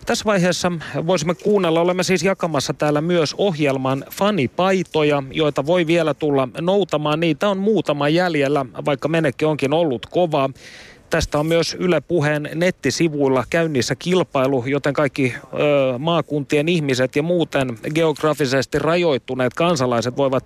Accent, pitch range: native, 135-175 Hz